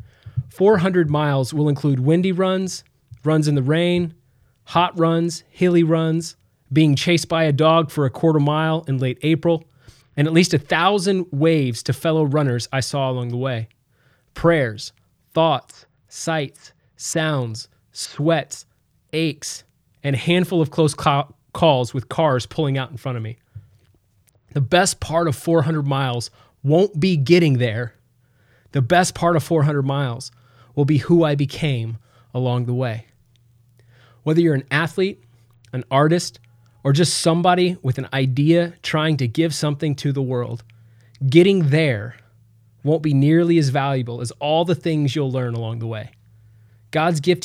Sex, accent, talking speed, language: male, American, 155 wpm, English